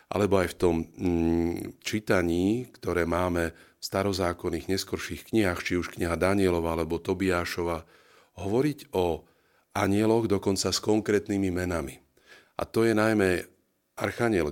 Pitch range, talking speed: 85-100 Hz, 120 wpm